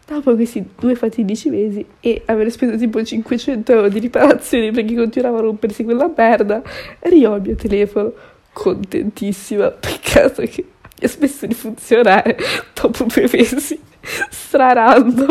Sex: female